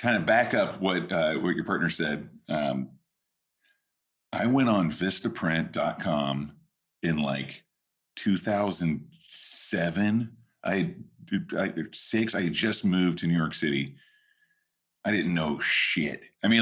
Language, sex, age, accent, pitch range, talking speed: English, male, 40-59, American, 80-110 Hz, 125 wpm